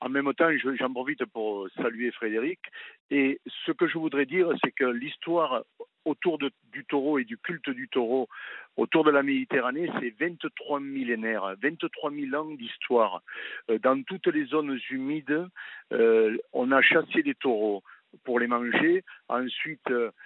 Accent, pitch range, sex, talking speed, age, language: French, 130-190 Hz, male, 155 wpm, 60-79, French